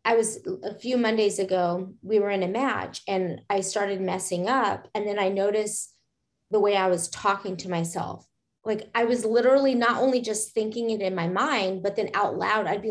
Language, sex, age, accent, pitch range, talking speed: English, female, 30-49, American, 210-300 Hz, 210 wpm